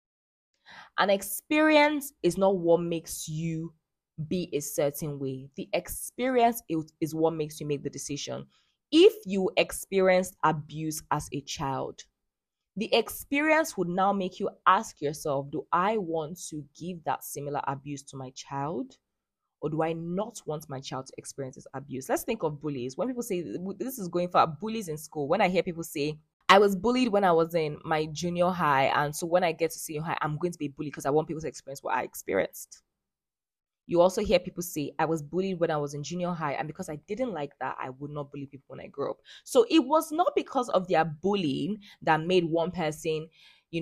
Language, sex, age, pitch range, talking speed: English, female, 20-39, 150-195 Hz, 205 wpm